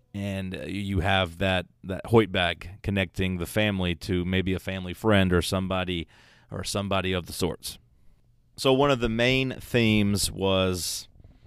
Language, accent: English, American